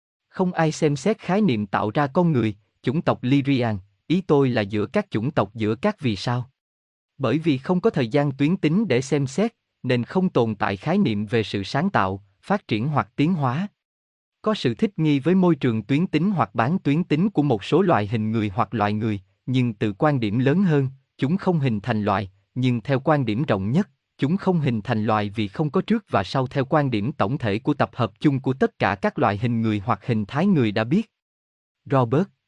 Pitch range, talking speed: 110-160 Hz, 225 wpm